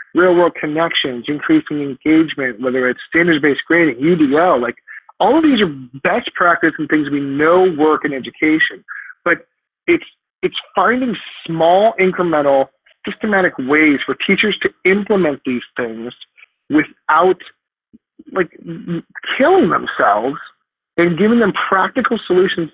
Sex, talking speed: male, 120 wpm